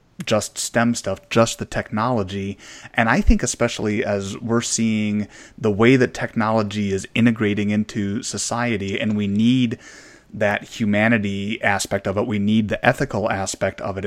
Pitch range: 100-115 Hz